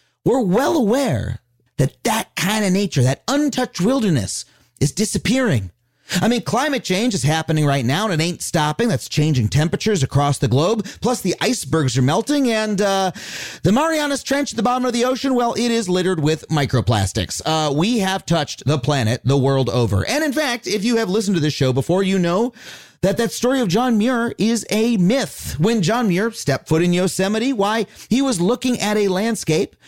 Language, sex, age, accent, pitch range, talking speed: English, male, 30-49, American, 145-225 Hz, 195 wpm